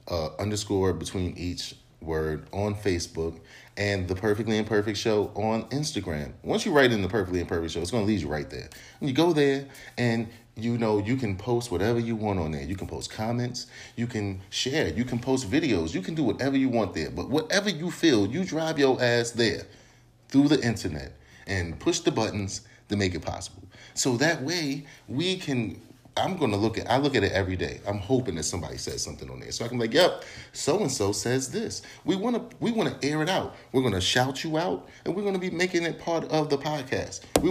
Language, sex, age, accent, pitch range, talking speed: English, male, 30-49, American, 100-135 Hz, 230 wpm